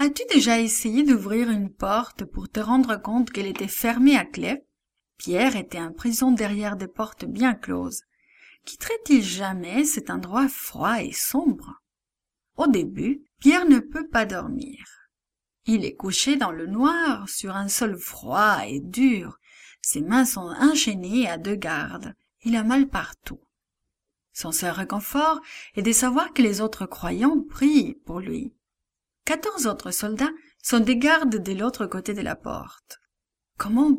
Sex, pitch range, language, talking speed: female, 200-275 Hz, English, 155 wpm